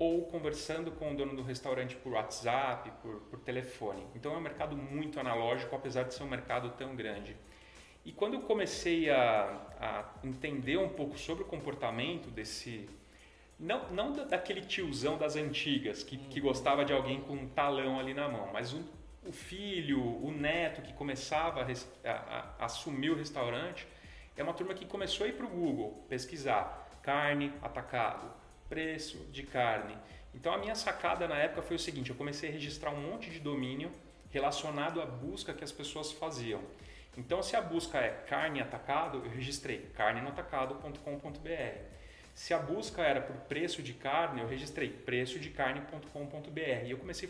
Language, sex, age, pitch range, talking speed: Portuguese, male, 30-49, 125-155 Hz, 170 wpm